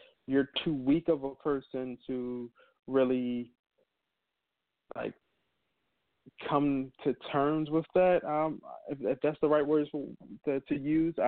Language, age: English, 20-39